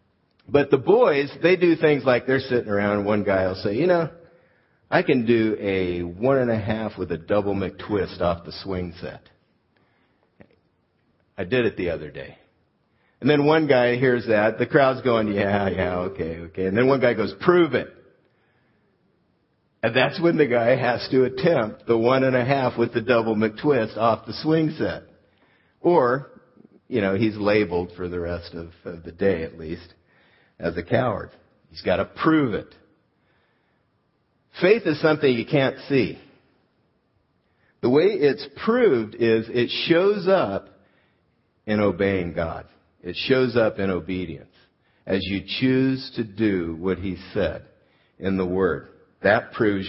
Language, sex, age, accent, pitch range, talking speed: English, male, 50-69, American, 95-130 Hz, 160 wpm